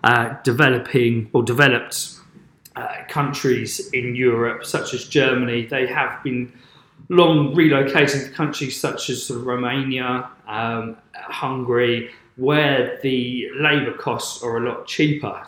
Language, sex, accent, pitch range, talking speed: English, male, British, 120-140 Hz, 115 wpm